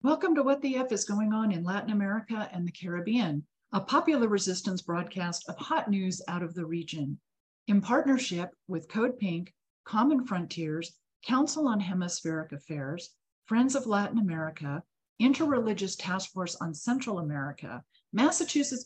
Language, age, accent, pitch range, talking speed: English, 50-69, American, 175-230 Hz, 150 wpm